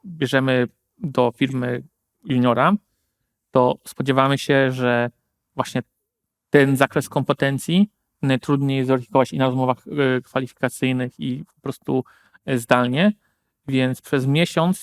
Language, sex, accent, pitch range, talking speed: Polish, male, native, 130-145 Hz, 105 wpm